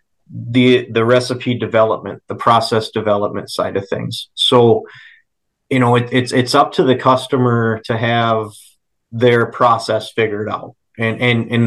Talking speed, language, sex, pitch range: 150 wpm, English, male, 110-125 Hz